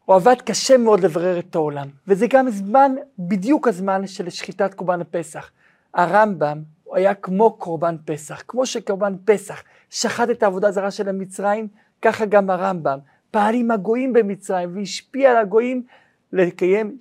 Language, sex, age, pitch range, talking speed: Hebrew, male, 50-69, 175-210 Hz, 145 wpm